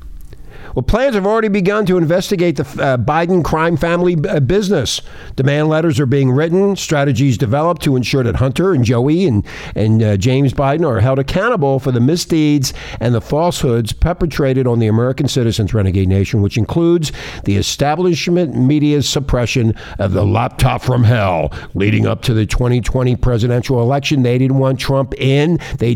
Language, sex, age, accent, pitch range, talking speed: English, male, 50-69, American, 120-165 Hz, 165 wpm